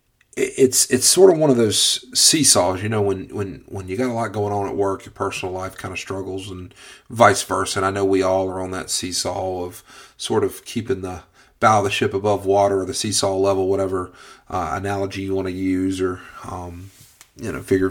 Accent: American